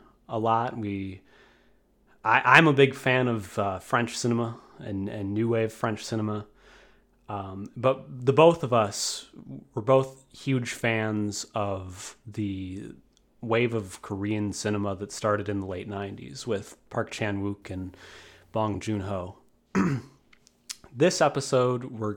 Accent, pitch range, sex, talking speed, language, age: American, 100-125 Hz, male, 130 wpm, English, 30-49